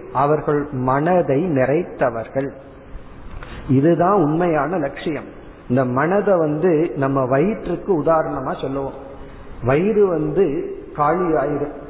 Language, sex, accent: Tamil, male, native